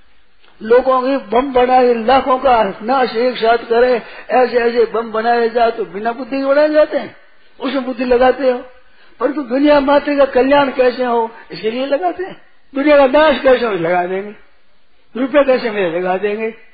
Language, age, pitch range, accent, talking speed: Hindi, 60-79, 195-260 Hz, native, 180 wpm